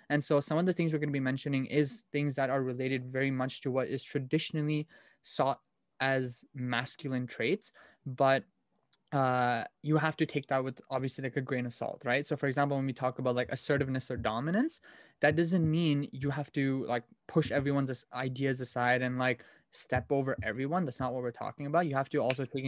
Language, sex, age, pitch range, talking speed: English, male, 20-39, 125-150 Hz, 210 wpm